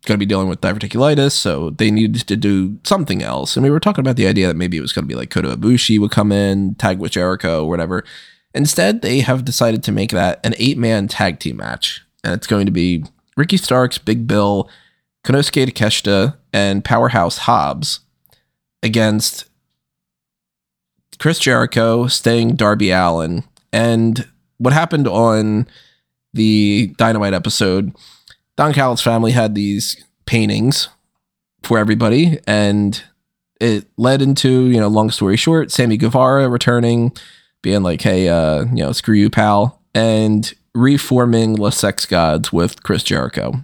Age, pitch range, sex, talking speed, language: 20-39, 100-130 Hz, male, 155 wpm, English